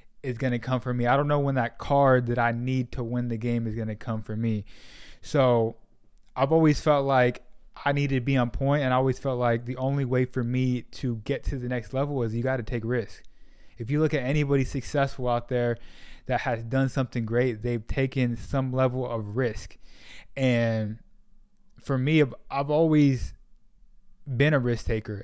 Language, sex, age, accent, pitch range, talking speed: English, male, 20-39, American, 115-135 Hz, 195 wpm